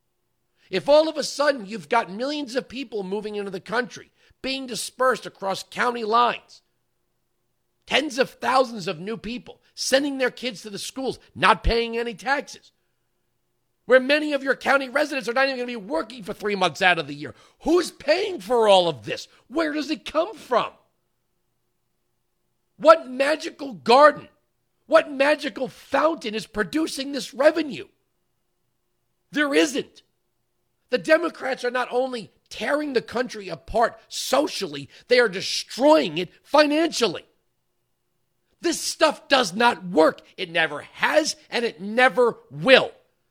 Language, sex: English, male